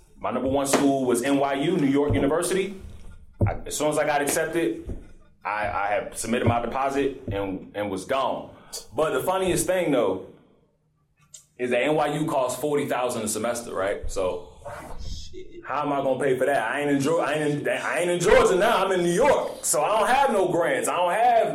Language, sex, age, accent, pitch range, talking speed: English, male, 30-49, American, 105-150 Hz, 200 wpm